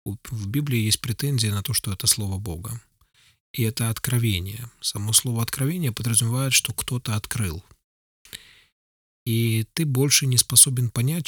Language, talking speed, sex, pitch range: Ukrainian, 140 wpm, male, 105-130 Hz